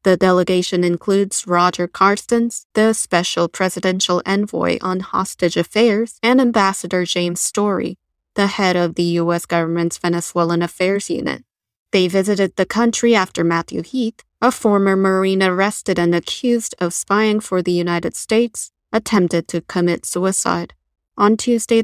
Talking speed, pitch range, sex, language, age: 135 wpm, 175-215 Hz, female, English, 20-39